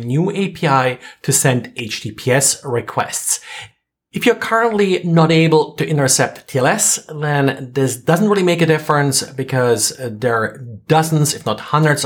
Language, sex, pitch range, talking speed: English, male, 120-155 Hz, 140 wpm